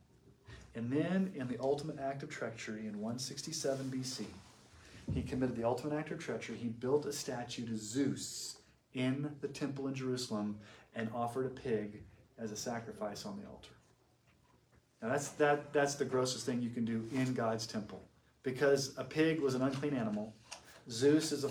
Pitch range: 115-145 Hz